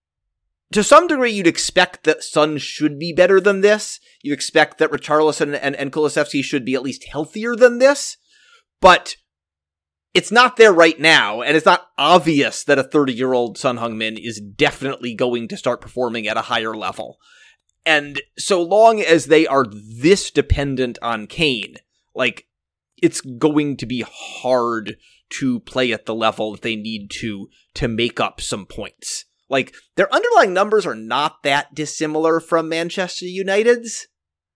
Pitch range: 120-170 Hz